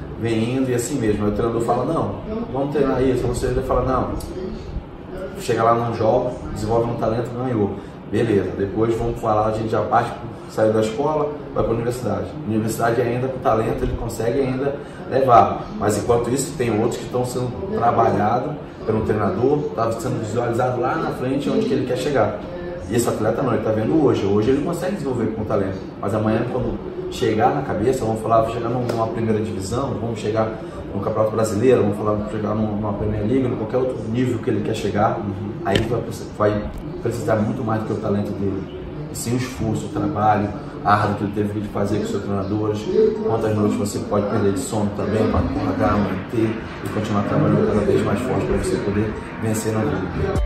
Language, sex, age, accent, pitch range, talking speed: Portuguese, male, 20-39, Brazilian, 105-125 Hz, 205 wpm